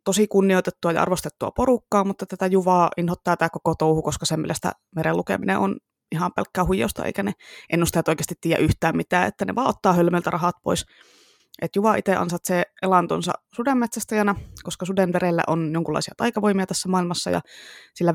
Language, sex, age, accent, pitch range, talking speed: Finnish, female, 20-39, native, 170-200 Hz, 165 wpm